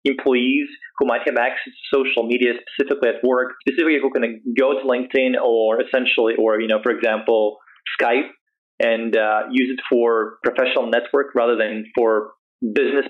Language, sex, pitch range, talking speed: English, male, 115-145 Hz, 165 wpm